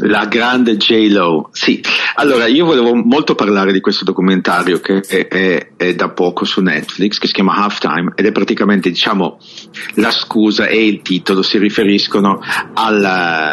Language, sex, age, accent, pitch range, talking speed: English, male, 50-69, Italian, 85-105 Hz, 170 wpm